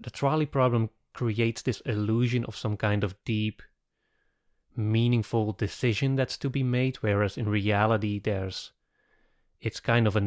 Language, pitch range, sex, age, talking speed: English, 105-120 Hz, male, 30-49, 145 wpm